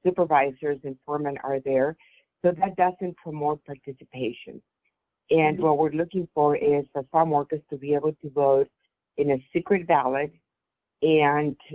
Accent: American